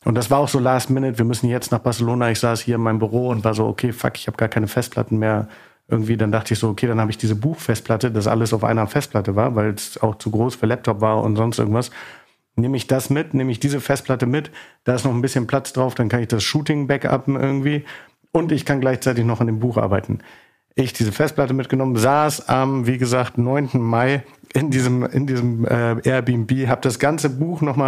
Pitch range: 115-135 Hz